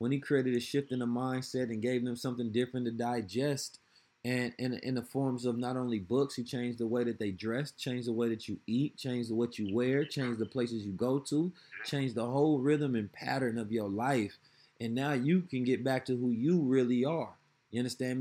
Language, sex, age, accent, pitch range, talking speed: English, male, 30-49, American, 115-140 Hz, 225 wpm